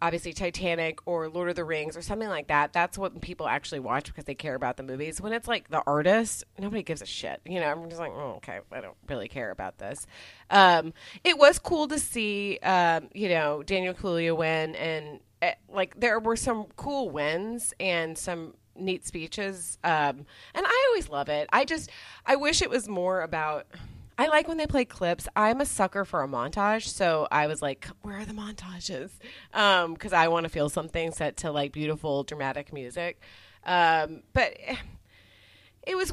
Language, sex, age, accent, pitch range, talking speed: English, female, 30-49, American, 155-210 Hz, 200 wpm